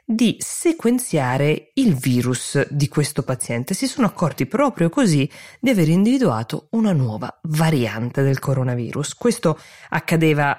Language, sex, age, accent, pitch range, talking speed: Italian, female, 20-39, native, 130-175 Hz, 125 wpm